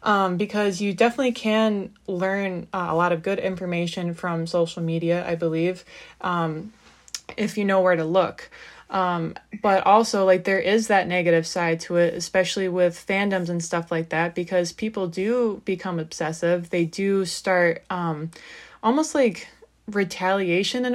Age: 20-39